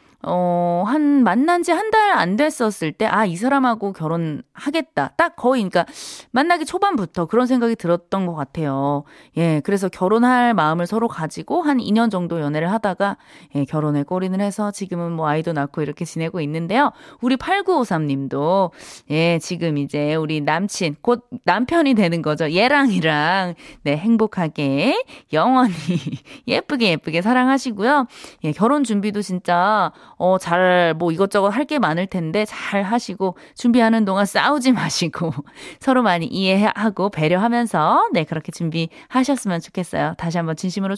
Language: Korean